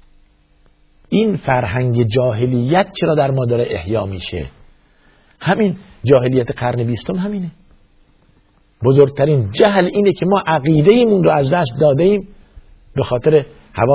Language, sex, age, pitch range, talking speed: Persian, male, 50-69, 100-145 Hz, 120 wpm